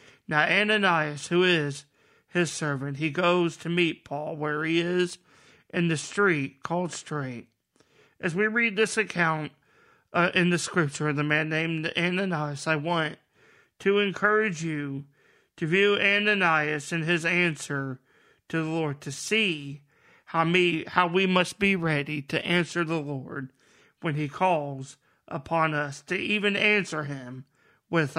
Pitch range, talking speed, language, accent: 145-175 Hz, 150 wpm, English, American